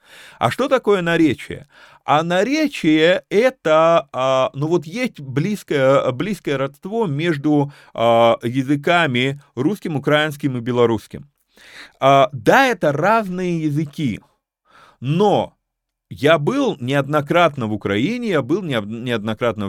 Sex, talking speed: male, 100 wpm